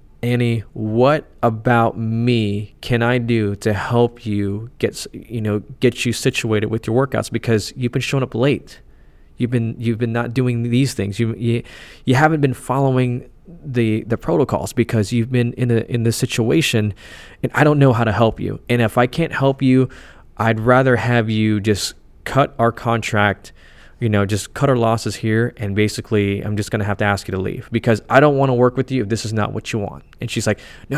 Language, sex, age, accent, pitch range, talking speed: English, male, 20-39, American, 105-125 Hz, 210 wpm